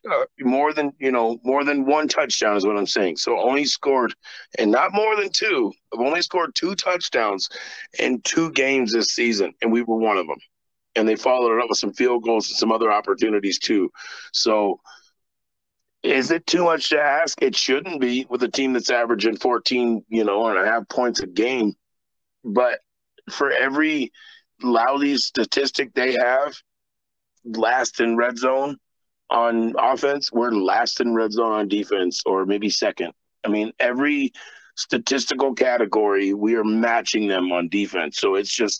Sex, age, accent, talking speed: male, 40-59, American, 175 wpm